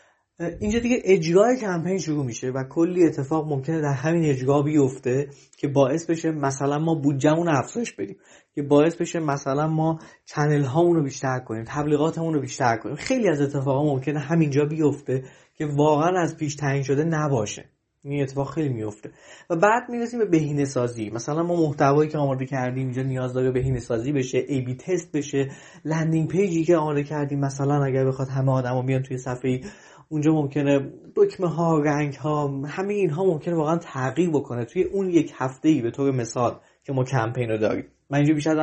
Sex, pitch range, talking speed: male, 135-165 Hz, 180 wpm